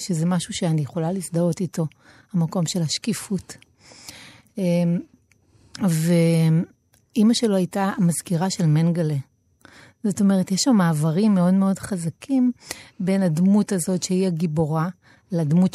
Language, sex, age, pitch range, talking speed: Hebrew, female, 30-49, 165-210 Hz, 110 wpm